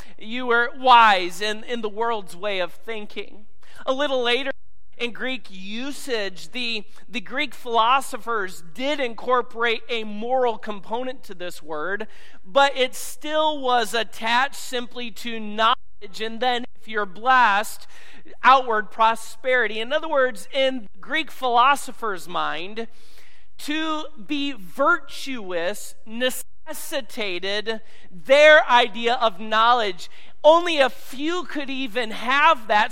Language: English